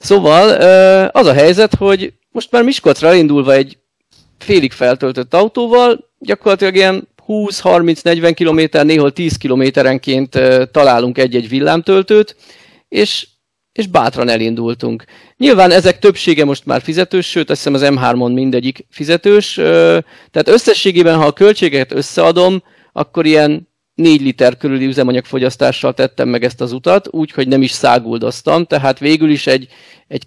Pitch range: 130-180 Hz